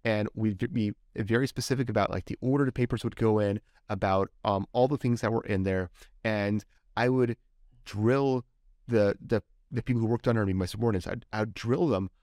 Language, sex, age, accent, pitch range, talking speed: English, male, 30-49, American, 105-125 Hz, 200 wpm